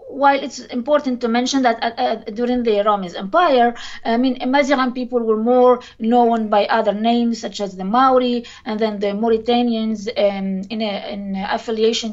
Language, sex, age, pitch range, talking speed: English, female, 20-39, 210-255 Hz, 175 wpm